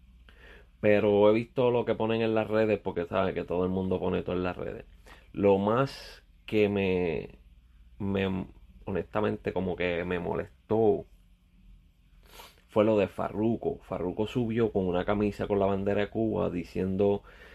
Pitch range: 80-105 Hz